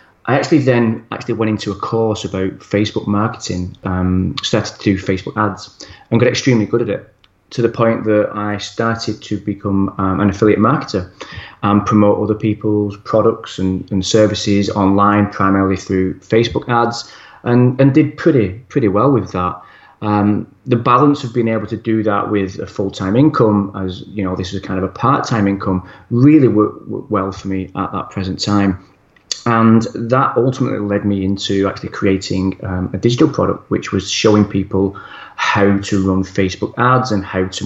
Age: 30-49